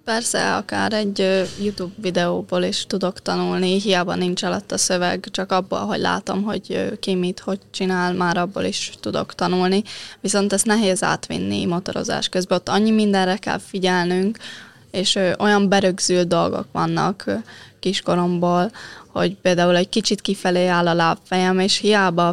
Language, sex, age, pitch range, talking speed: Hungarian, female, 20-39, 180-200 Hz, 145 wpm